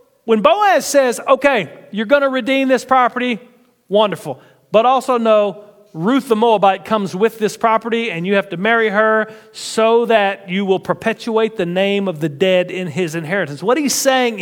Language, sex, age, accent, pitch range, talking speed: English, male, 40-59, American, 195-260 Hz, 180 wpm